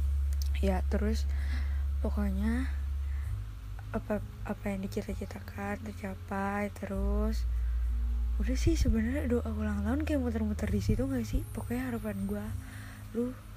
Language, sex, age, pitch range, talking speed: Indonesian, female, 20-39, 75-105 Hz, 110 wpm